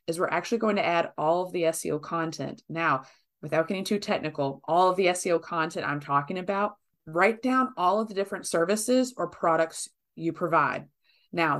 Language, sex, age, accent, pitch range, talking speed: English, female, 30-49, American, 165-210 Hz, 185 wpm